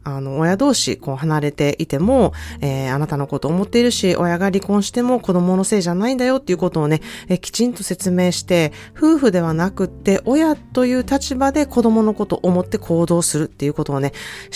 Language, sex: Japanese, female